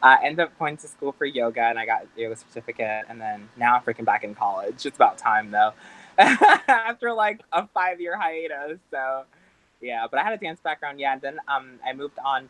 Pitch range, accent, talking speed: 115-150 Hz, American, 230 wpm